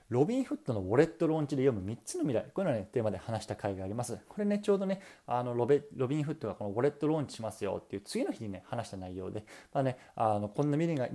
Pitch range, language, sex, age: 100-145 Hz, Japanese, male, 20-39